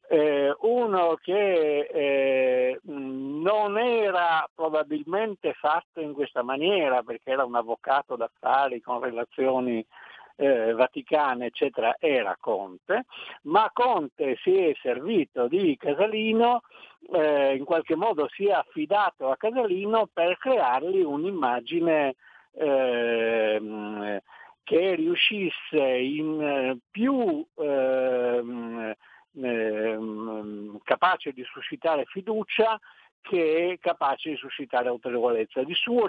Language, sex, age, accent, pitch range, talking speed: Italian, male, 60-79, native, 125-190 Hz, 95 wpm